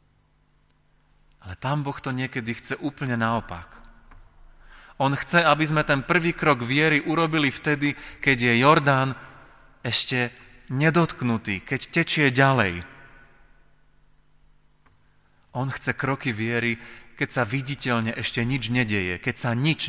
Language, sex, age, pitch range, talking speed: Slovak, male, 30-49, 110-135 Hz, 120 wpm